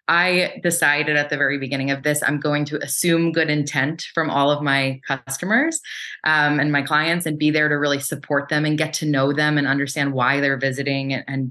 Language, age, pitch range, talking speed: English, 20-39, 135-160 Hz, 215 wpm